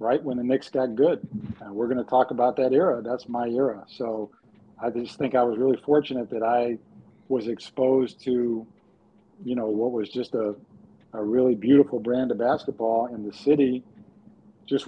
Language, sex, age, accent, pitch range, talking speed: English, male, 50-69, American, 120-135 Hz, 185 wpm